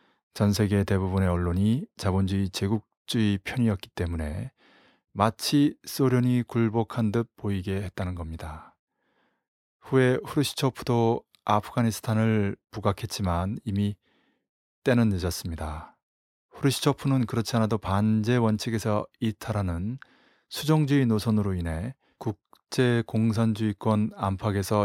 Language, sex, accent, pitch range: Korean, male, native, 95-120 Hz